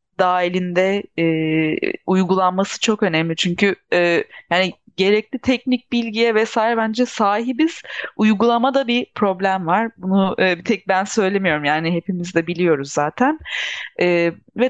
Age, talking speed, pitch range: 30-49, 120 wpm, 190-250 Hz